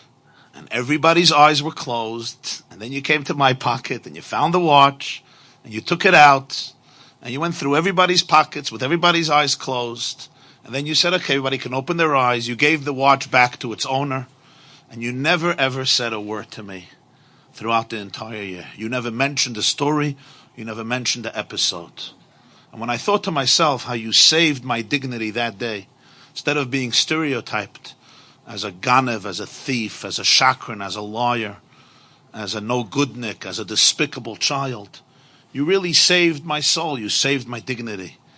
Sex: male